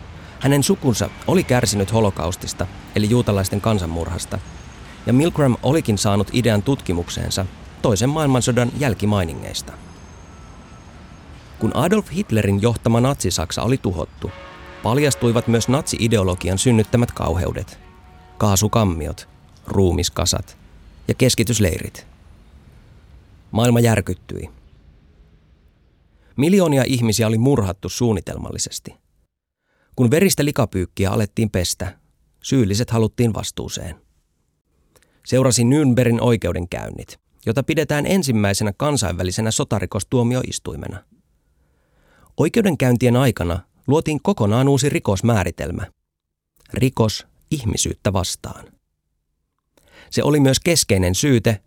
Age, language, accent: 30-49, Finnish, native